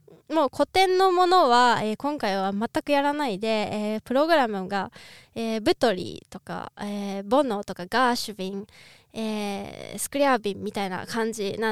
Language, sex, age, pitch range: Japanese, female, 20-39, 215-300 Hz